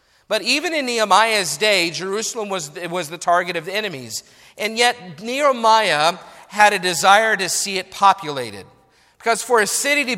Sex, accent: male, American